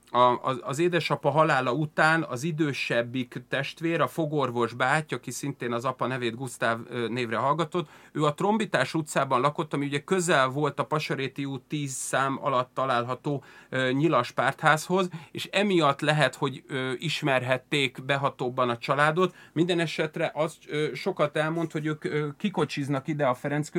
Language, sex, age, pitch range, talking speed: Hungarian, male, 30-49, 130-155 Hz, 140 wpm